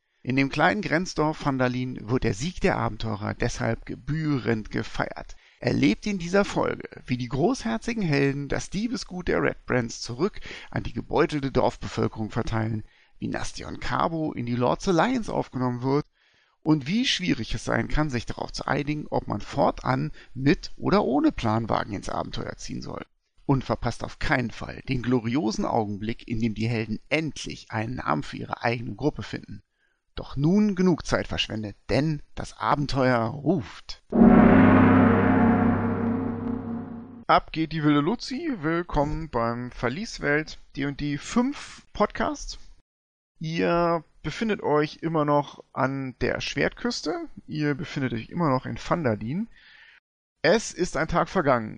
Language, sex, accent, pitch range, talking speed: German, male, German, 120-180 Hz, 140 wpm